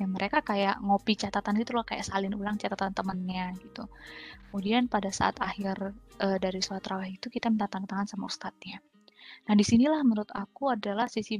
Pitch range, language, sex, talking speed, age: 195-235 Hz, Indonesian, female, 175 wpm, 20-39